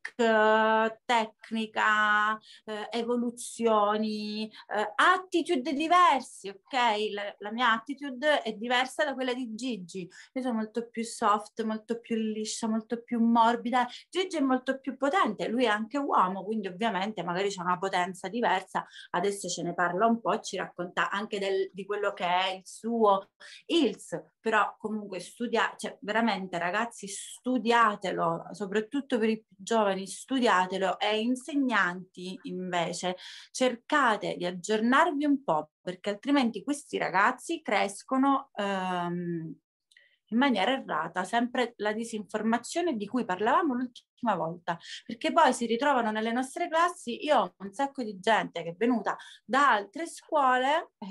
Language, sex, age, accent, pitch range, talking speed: Italian, female, 30-49, native, 195-250 Hz, 140 wpm